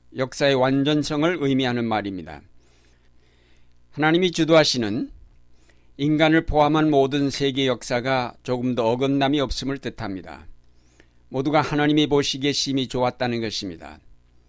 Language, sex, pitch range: Korean, male, 105-140 Hz